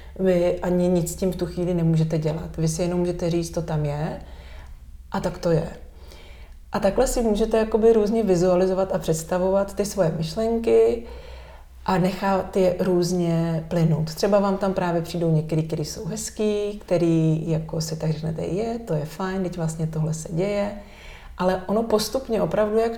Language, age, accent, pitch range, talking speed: Czech, 30-49, native, 160-195 Hz, 175 wpm